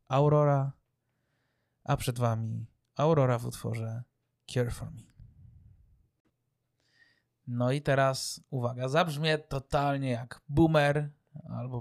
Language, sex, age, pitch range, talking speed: Polish, male, 20-39, 120-150 Hz, 95 wpm